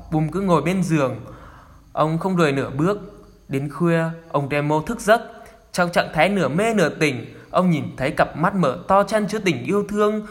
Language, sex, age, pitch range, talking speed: Vietnamese, male, 10-29, 140-190 Hz, 205 wpm